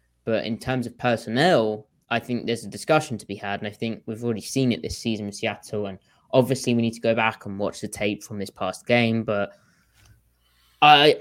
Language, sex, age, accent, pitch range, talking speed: English, male, 20-39, British, 110-125 Hz, 220 wpm